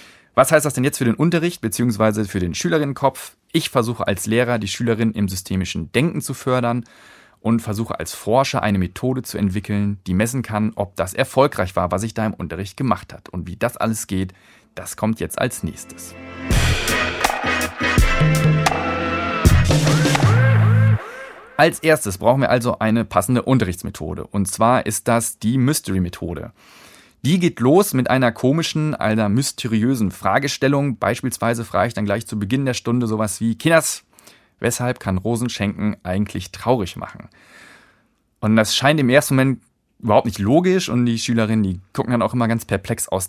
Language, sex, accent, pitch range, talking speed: German, male, German, 105-130 Hz, 160 wpm